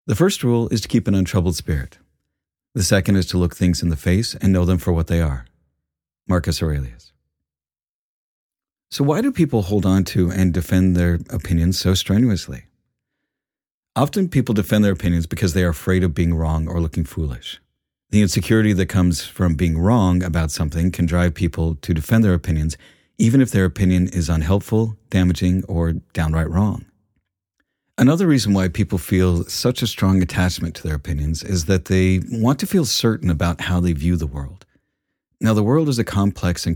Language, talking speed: English, 185 wpm